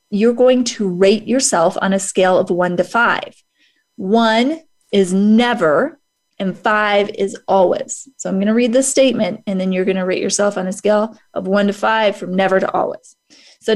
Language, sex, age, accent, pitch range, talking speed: English, female, 30-49, American, 190-240 Hz, 195 wpm